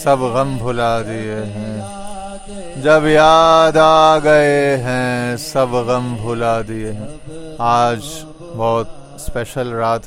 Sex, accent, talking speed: male, Indian, 100 wpm